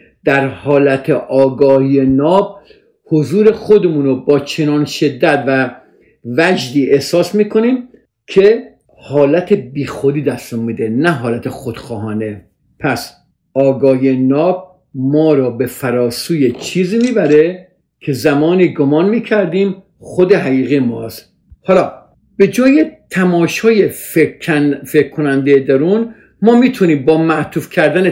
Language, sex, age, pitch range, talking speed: Persian, male, 50-69, 135-195 Hz, 105 wpm